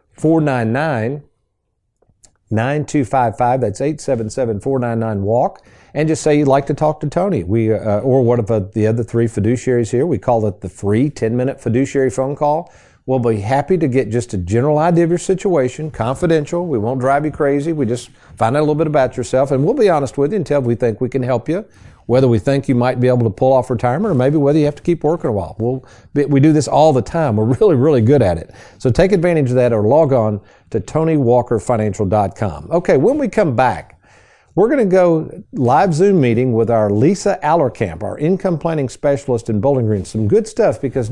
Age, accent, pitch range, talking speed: 50-69, American, 110-155 Hz, 215 wpm